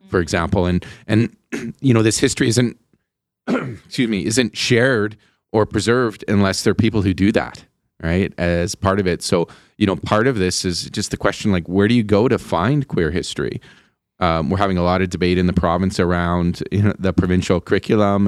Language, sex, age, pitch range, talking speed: English, male, 30-49, 90-105 Hz, 195 wpm